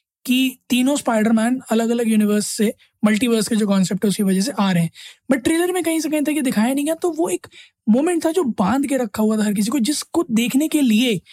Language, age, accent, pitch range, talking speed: Hindi, 20-39, native, 210-270 Hz, 235 wpm